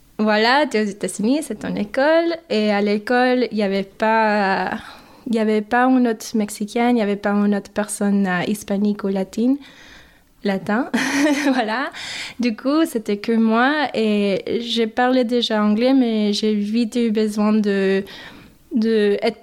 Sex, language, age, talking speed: female, French, 20-39, 160 wpm